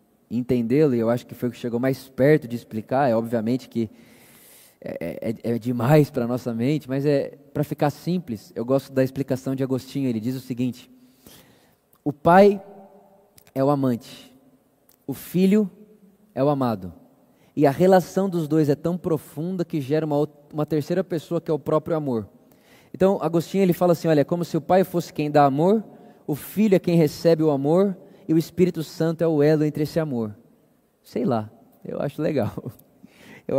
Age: 20-39